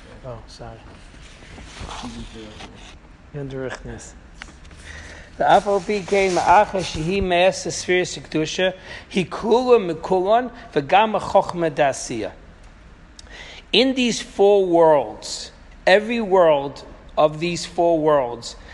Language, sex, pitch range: English, male, 135-190 Hz